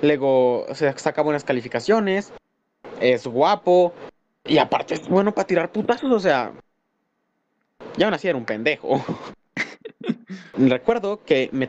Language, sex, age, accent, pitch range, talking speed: Spanish, male, 20-39, Mexican, 130-215 Hz, 130 wpm